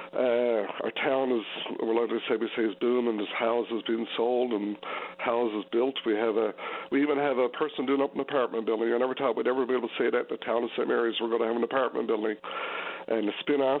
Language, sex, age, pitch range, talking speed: English, male, 60-79, 115-135 Hz, 250 wpm